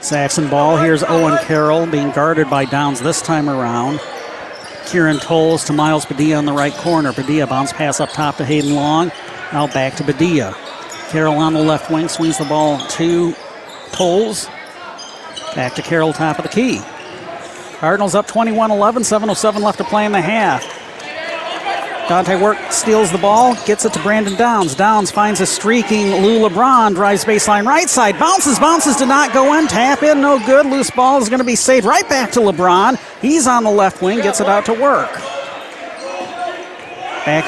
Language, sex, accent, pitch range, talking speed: English, male, American, 155-225 Hz, 180 wpm